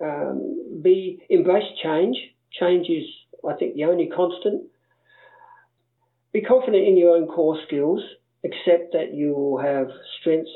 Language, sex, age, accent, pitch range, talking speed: English, male, 50-69, Australian, 145-185 Hz, 135 wpm